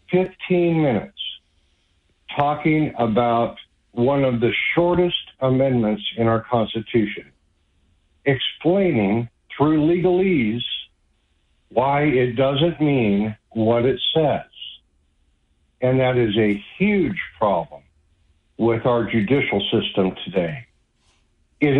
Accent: American